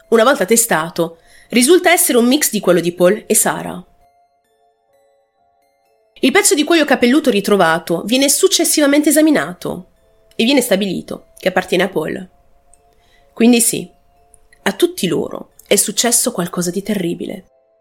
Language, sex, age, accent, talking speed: Italian, female, 30-49, native, 130 wpm